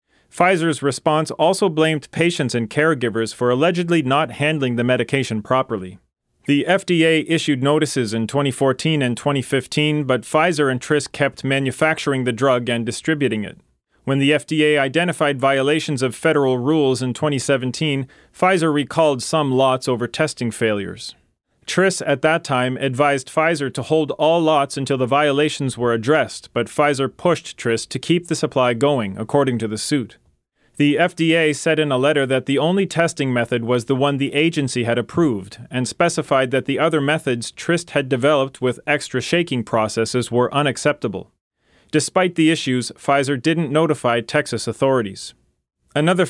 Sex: male